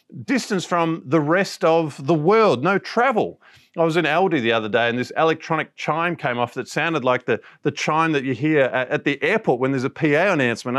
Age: 40-59